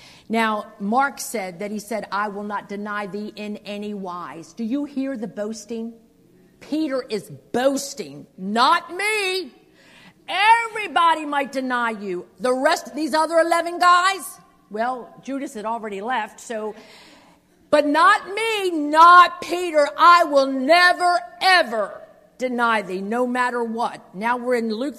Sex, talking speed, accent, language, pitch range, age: female, 140 wpm, American, English, 205-280 Hz, 50-69